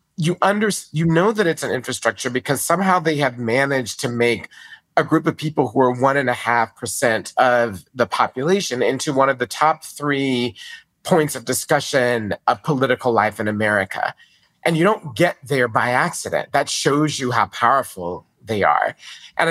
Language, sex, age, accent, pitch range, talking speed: English, male, 40-59, American, 120-150 Hz, 180 wpm